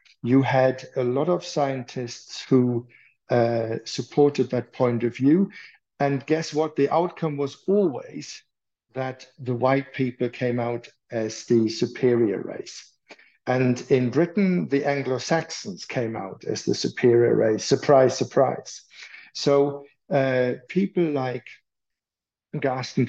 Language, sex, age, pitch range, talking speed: English, male, 60-79, 120-145 Hz, 125 wpm